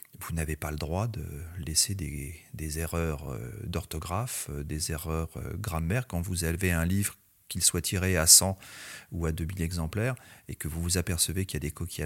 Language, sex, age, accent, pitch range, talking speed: French, male, 40-59, French, 80-105 Hz, 190 wpm